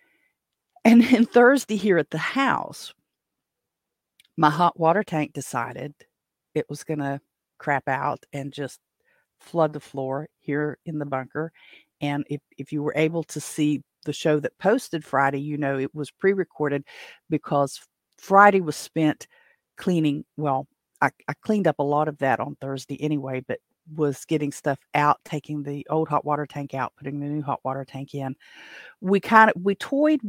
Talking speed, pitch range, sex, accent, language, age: 170 wpm, 145-170 Hz, female, American, English, 50-69